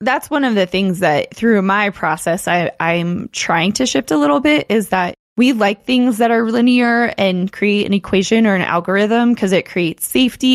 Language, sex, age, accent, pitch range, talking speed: English, female, 20-39, American, 175-205 Hz, 200 wpm